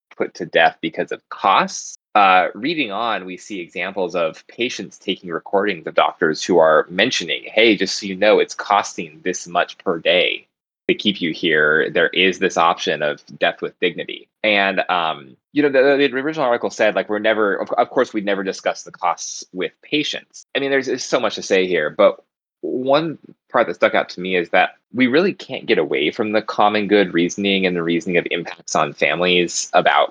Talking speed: 205 wpm